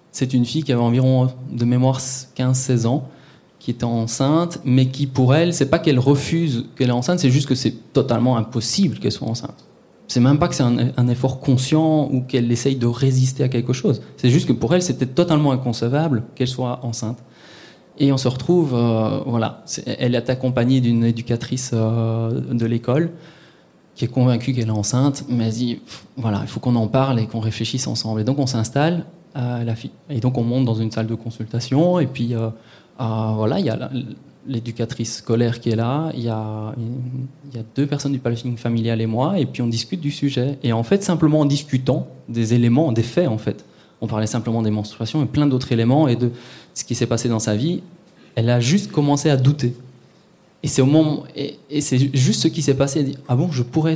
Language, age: French, 20-39